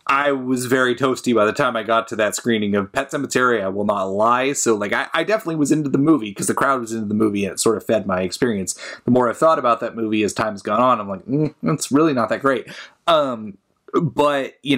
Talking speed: 265 wpm